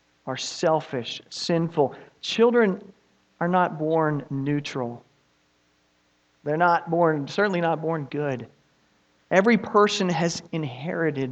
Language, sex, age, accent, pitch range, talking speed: English, male, 40-59, American, 130-170 Hz, 100 wpm